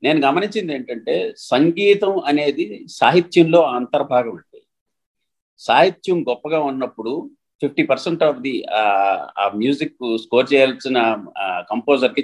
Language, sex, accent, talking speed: Telugu, male, native, 100 wpm